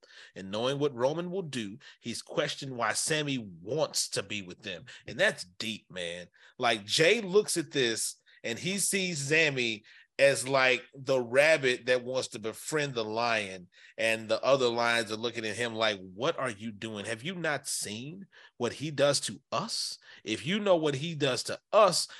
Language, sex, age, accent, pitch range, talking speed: English, male, 30-49, American, 120-195 Hz, 185 wpm